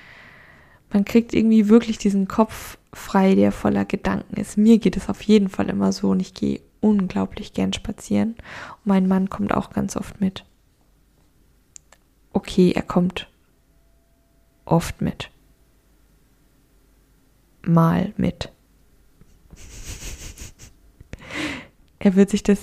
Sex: female